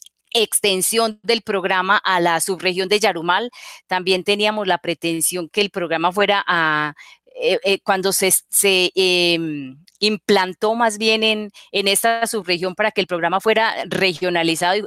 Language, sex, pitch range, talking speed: Spanish, female, 180-215 Hz, 145 wpm